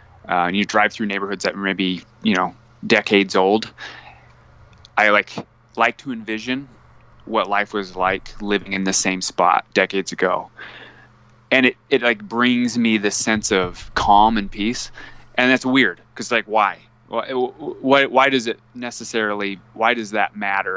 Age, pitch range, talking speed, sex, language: 20-39, 95-115 Hz, 165 wpm, male, English